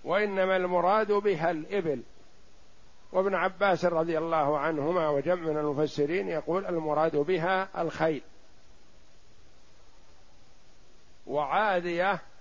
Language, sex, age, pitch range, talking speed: Arabic, male, 50-69, 160-190 Hz, 80 wpm